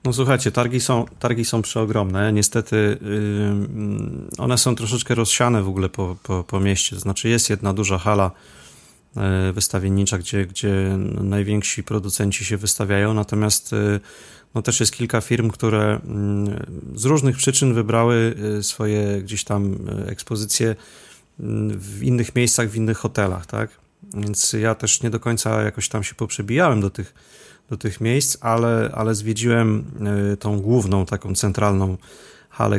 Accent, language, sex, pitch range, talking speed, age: native, Polish, male, 100-120 Hz, 140 wpm, 30-49